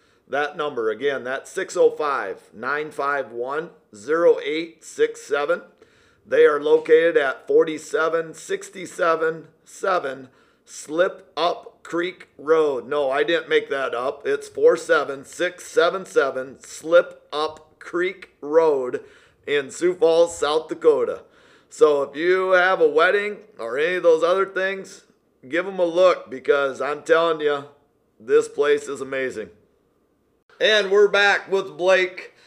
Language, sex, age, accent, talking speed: English, male, 50-69, American, 115 wpm